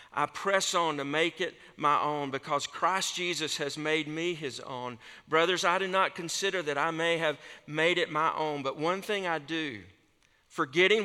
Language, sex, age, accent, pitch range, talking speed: English, male, 50-69, American, 120-170 Hz, 190 wpm